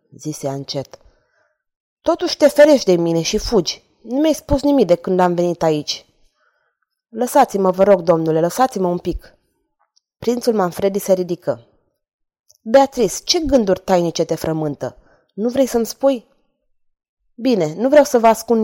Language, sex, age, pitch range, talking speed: Romanian, female, 20-39, 175-255 Hz, 145 wpm